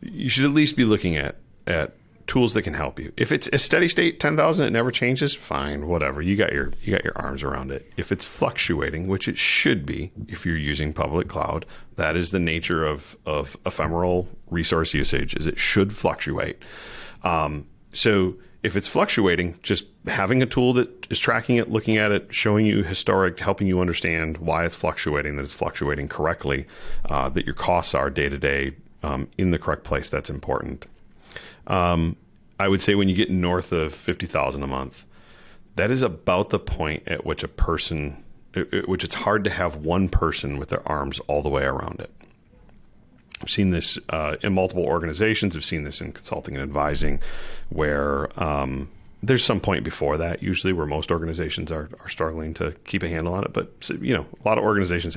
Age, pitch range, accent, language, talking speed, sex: 40-59, 75-100 Hz, American, English, 200 wpm, male